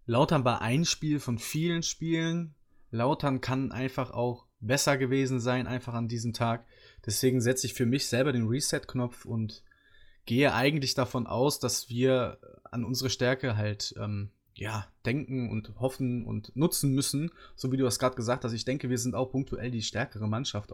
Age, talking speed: 20-39, 175 wpm